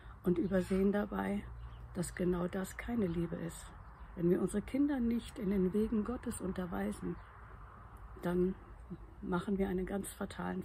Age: 60-79